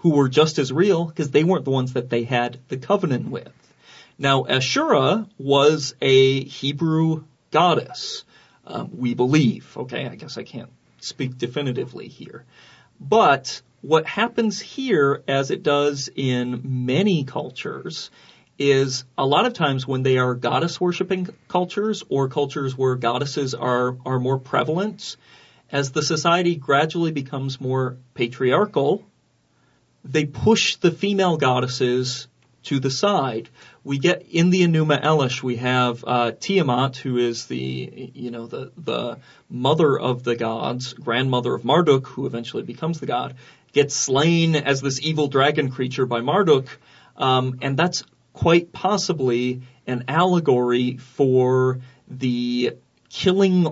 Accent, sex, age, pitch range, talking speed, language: American, male, 40-59, 125-155 Hz, 140 wpm, English